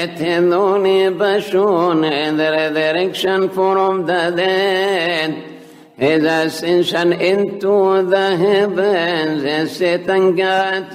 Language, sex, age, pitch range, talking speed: English, male, 60-79, 155-195 Hz, 90 wpm